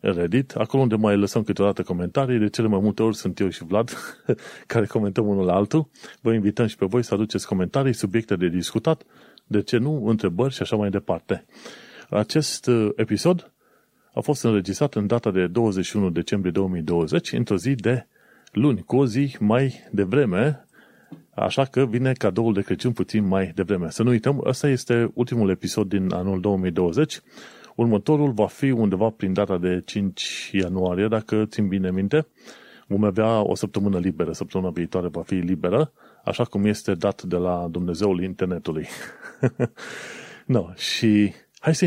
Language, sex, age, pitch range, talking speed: Romanian, male, 30-49, 95-120 Hz, 165 wpm